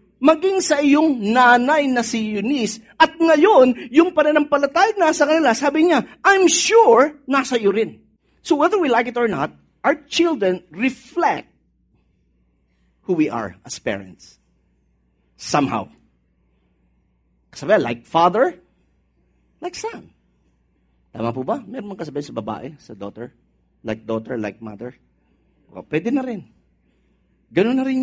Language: English